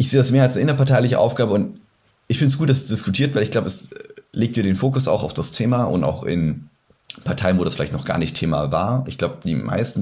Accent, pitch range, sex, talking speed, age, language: German, 90-115 Hz, male, 265 wpm, 30-49, German